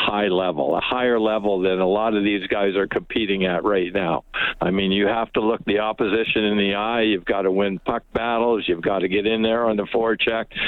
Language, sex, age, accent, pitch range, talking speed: English, male, 60-79, American, 100-120 Hz, 240 wpm